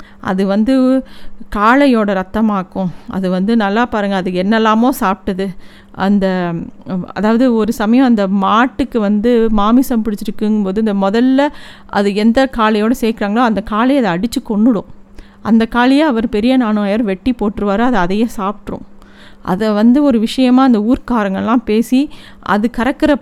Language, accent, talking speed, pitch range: Tamil, native, 135 wpm, 200-240 Hz